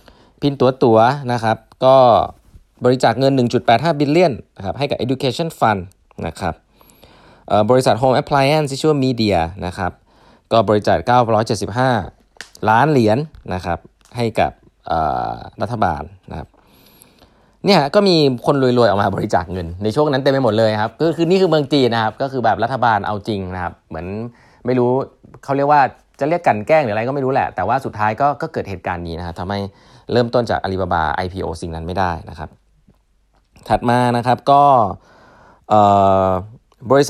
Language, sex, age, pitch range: Thai, male, 20-39, 95-130 Hz